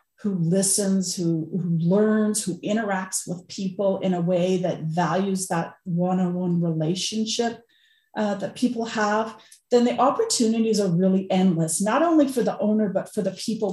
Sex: female